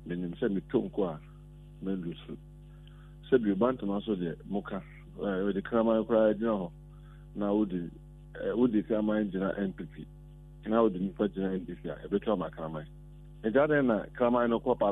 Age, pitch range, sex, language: 50-69, 110-155 Hz, male, English